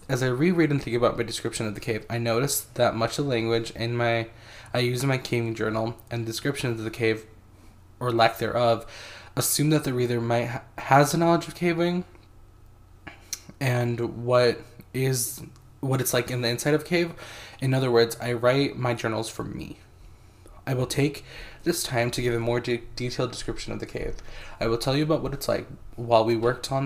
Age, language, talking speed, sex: 20-39, English, 205 wpm, male